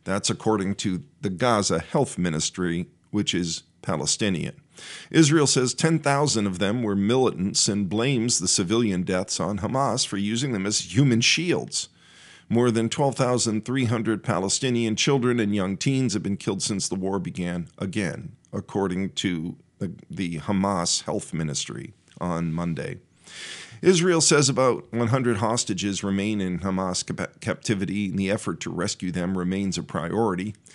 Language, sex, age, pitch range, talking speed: English, male, 50-69, 95-120 Hz, 140 wpm